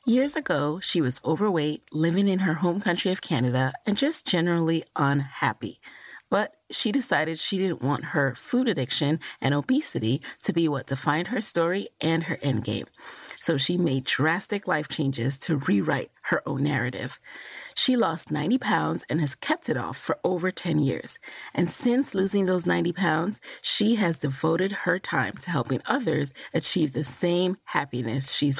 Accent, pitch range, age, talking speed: American, 140-190 Hz, 30-49, 170 wpm